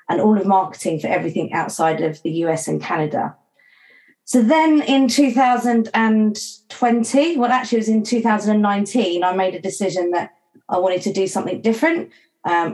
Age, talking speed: 40-59, 160 wpm